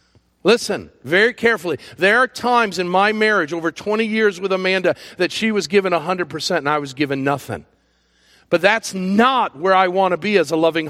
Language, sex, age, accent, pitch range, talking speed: English, male, 50-69, American, 145-230 Hz, 195 wpm